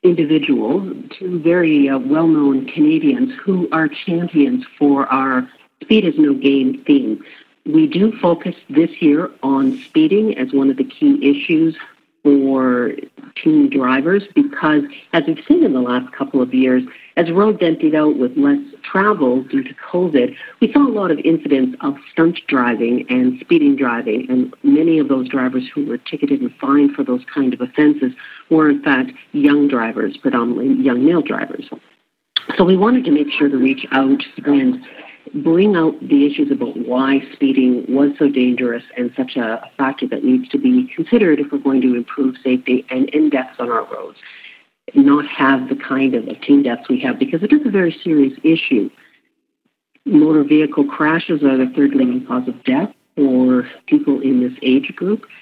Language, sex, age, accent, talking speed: English, female, 50-69, American, 175 wpm